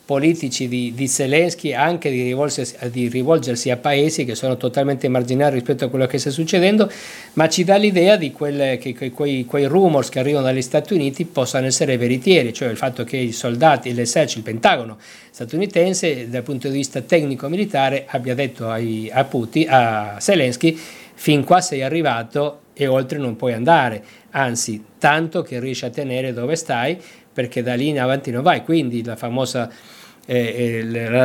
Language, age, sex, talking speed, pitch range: Italian, 50-69, male, 170 wpm, 125-155 Hz